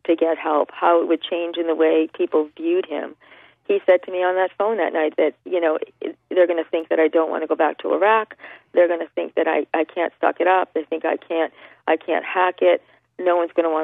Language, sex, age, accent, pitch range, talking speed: English, female, 40-59, American, 160-180 Hz, 270 wpm